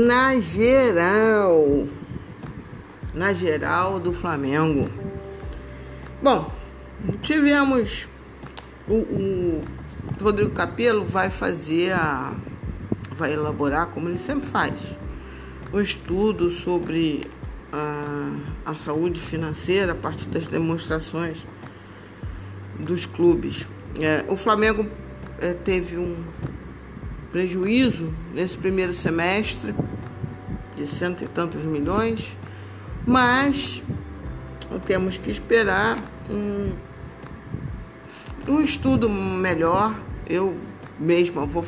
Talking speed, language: 90 wpm, Portuguese